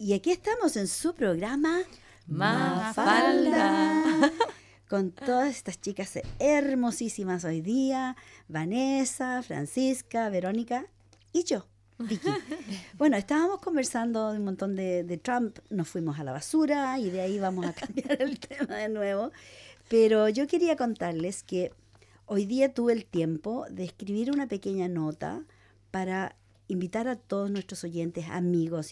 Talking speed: 135 wpm